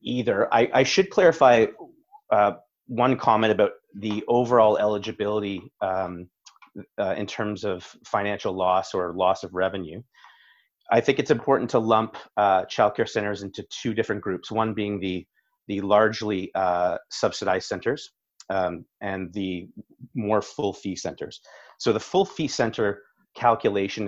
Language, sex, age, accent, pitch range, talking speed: English, male, 30-49, American, 95-110 Hz, 140 wpm